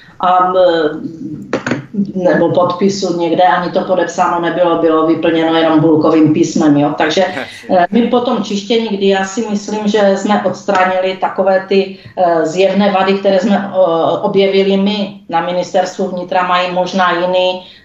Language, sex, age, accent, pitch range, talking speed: Czech, female, 40-59, native, 170-195 Hz, 140 wpm